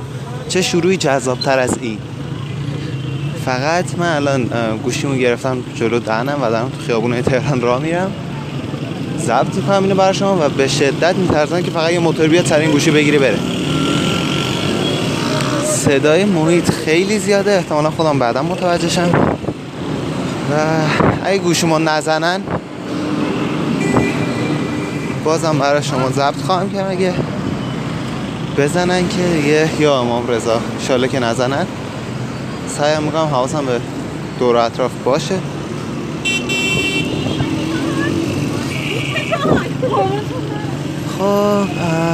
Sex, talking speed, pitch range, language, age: male, 100 wpm, 130-165 Hz, Persian, 20-39